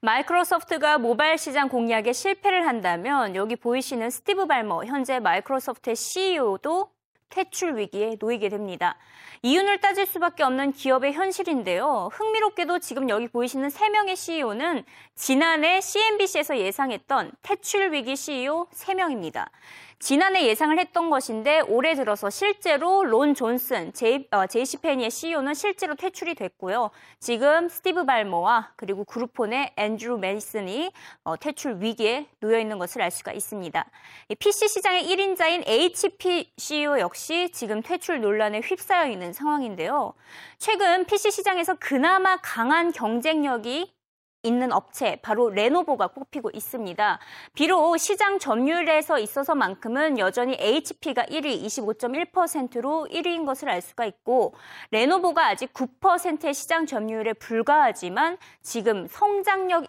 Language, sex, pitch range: Korean, female, 235-360 Hz